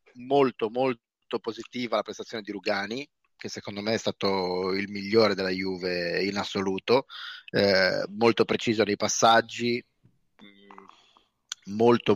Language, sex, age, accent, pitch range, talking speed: Italian, male, 30-49, native, 105-125 Hz, 120 wpm